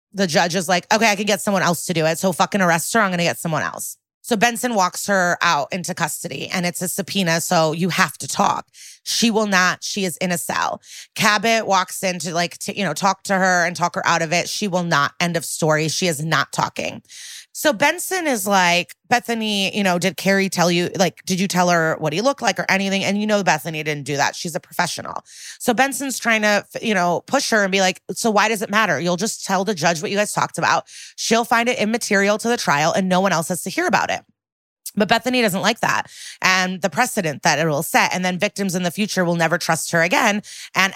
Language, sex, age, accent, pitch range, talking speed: English, female, 30-49, American, 175-215 Hz, 250 wpm